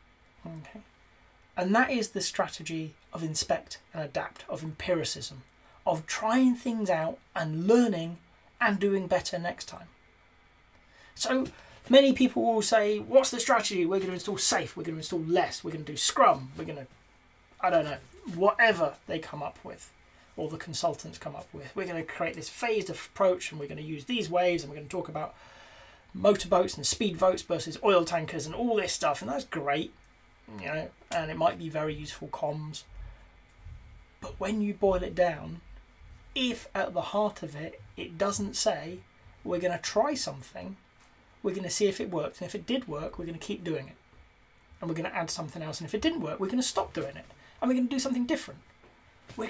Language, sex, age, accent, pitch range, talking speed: English, male, 30-49, British, 155-220 Hz, 205 wpm